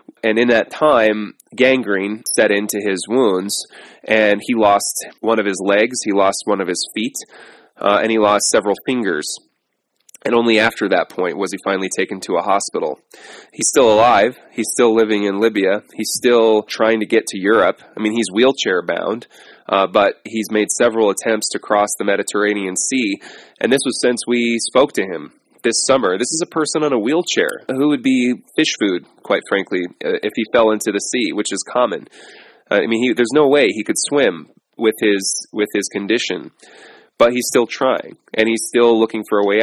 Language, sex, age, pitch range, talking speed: English, male, 20-39, 105-120 Hz, 195 wpm